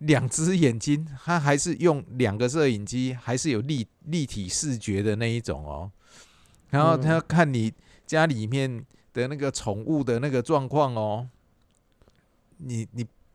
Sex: male